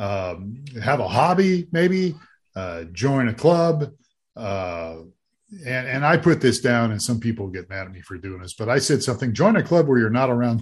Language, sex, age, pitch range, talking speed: English, male, 40-59, 100-135 Hz, 210 wpm